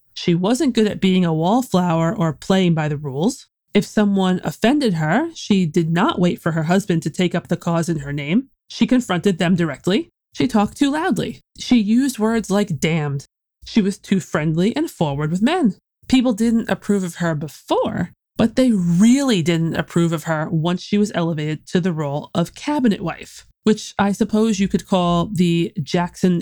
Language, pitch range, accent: English, 170-220 Hz, American